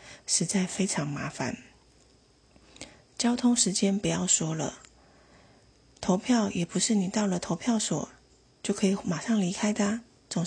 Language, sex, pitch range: Chinese, female, 175-215 Hz